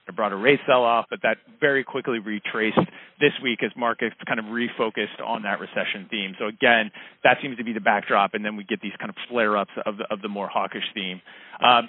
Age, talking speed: 30-49, 225 wpm